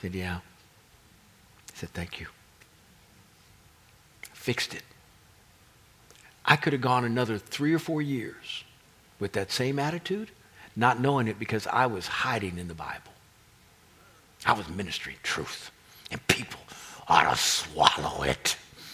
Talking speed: 125 wpm